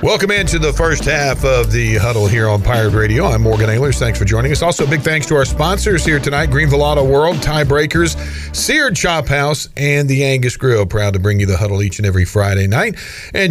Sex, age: male, 40-59